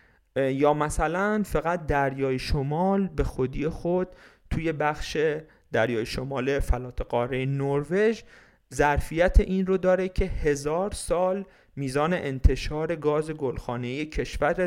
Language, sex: Persian, male